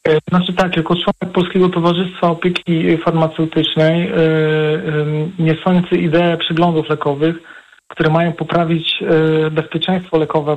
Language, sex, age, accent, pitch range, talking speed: Polish, male, 40-59, native, 155-175 Hz, 100 wpm